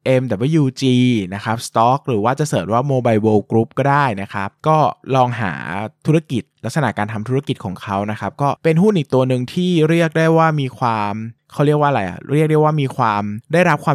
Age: 20-39